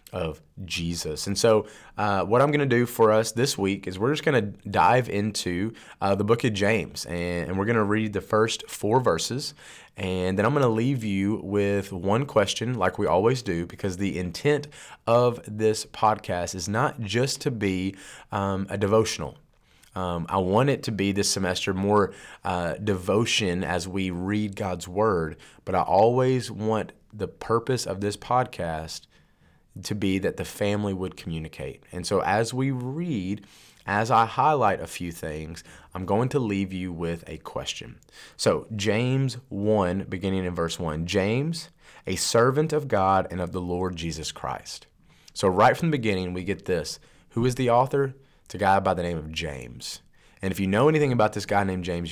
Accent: American